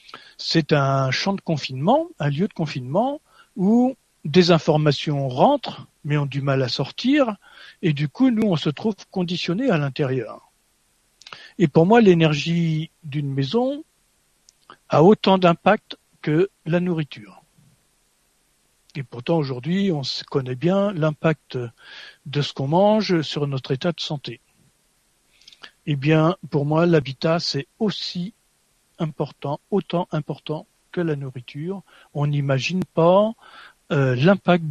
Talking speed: 130 wpm